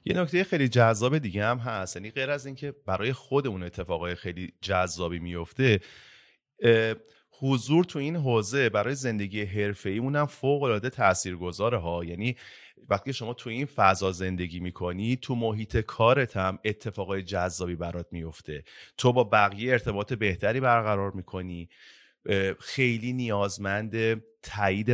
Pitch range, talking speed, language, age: 95-125 Hz, 130 wpm, Persian, 30-49